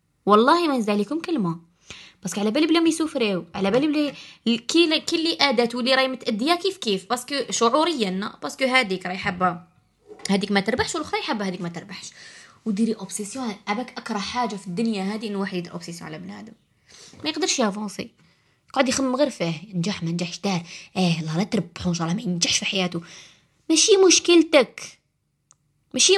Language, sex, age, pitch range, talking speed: Arabic, female, 20-39, 170-245 Hz, 165 wpm